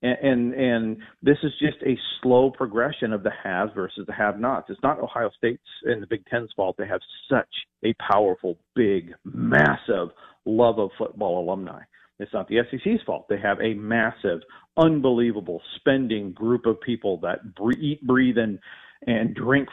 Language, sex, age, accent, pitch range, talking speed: English, male, 40-59, American, 110-130 Hz, 170 wpm